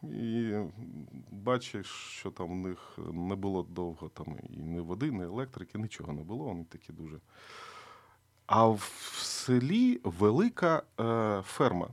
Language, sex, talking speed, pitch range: Ukrainian, male, 135 wpm, 95-135 Hz